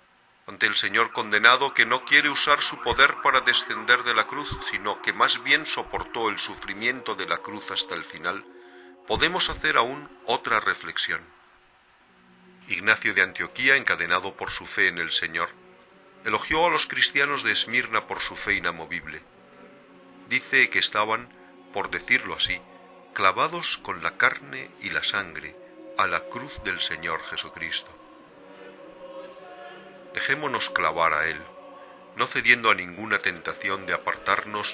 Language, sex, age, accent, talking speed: Spanish, male, 50-69, Spanish, 145 wpm